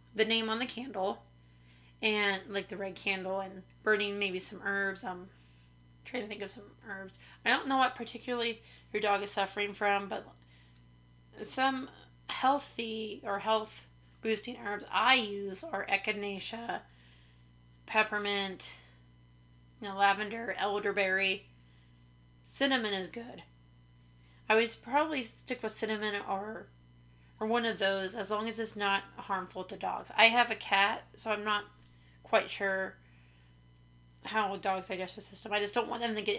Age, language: 30-49, English